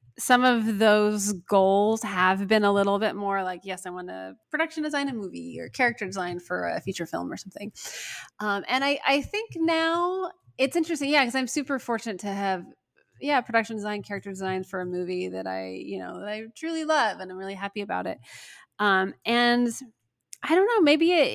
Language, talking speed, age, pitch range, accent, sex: English, 200 wpm, 20-39, 185-255 Hz, American, female